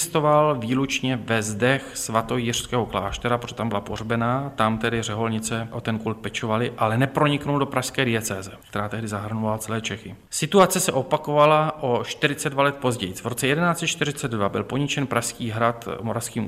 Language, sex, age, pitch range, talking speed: Czech, male, 40-59, 110-130 Hz, 150 wpm